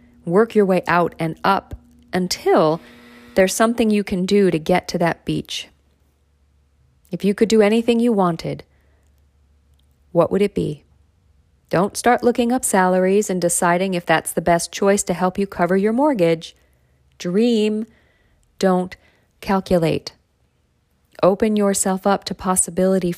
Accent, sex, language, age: American, female, English, 40-59